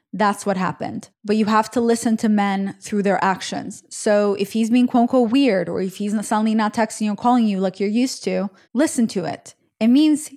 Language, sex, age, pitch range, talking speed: English, female, 20-39, 205-250 Hz, 230 wpm